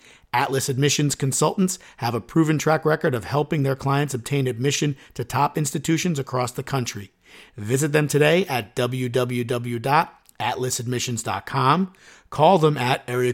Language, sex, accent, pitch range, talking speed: English, male, American, 110-145 Hz, 130 wpm